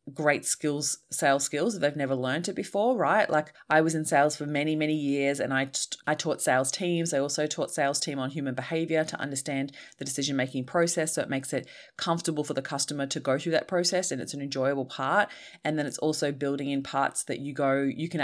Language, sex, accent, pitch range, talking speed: English, female, Australian, 135-165 Hz, 225 wpm